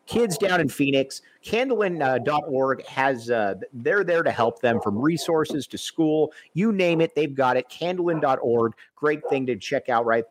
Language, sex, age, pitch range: English, male, 50-69, 125-180 Hz